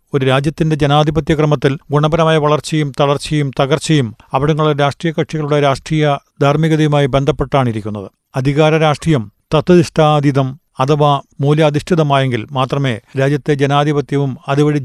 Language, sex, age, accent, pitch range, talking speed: Malayalam, male, 40-59, native, 135-155 Hz, 95 wpm